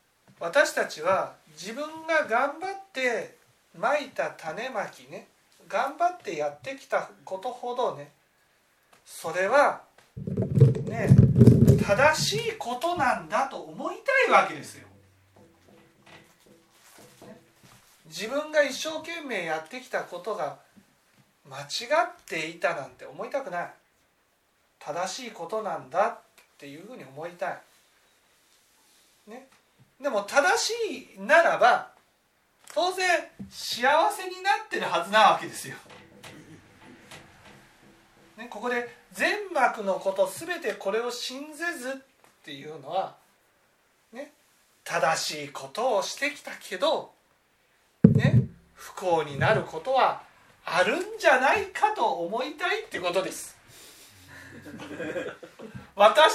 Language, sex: Japanese, male